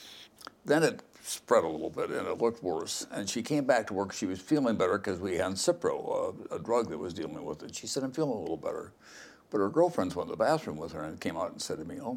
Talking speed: 275 wpm